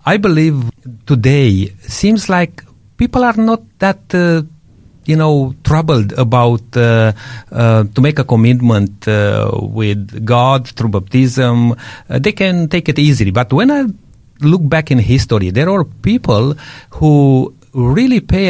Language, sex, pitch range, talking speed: English, male, 115-150 Hz, 145 wpm